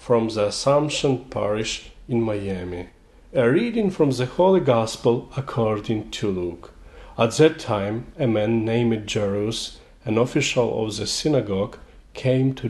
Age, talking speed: 40-59, 135 wpm